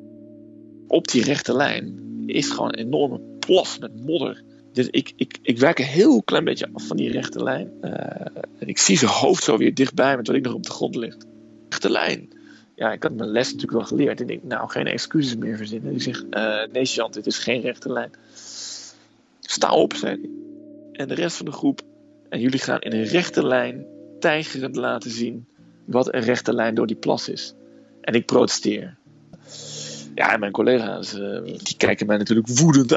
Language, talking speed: Dutch, 200 wpm